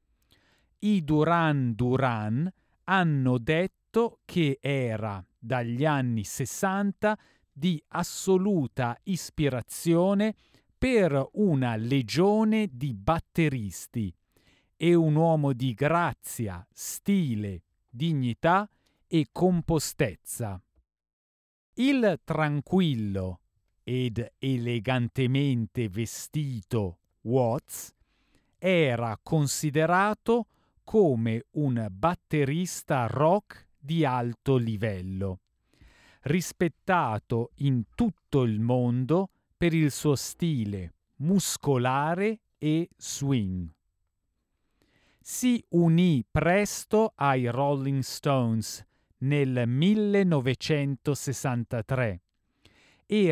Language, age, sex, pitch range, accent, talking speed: Italian, 40-59, male, 115-170 Hz, native, 70 wpm